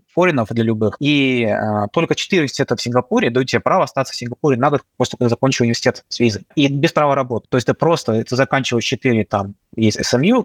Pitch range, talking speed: 115-140 Hz, 195 wpm